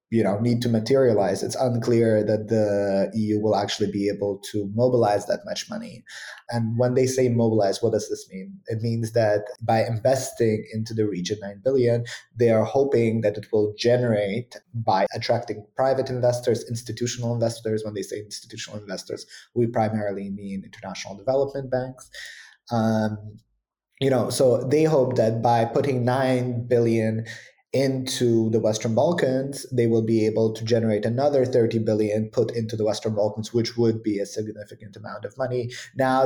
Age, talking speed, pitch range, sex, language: 20-39, 165 wpm, 110-125 Hz, male, English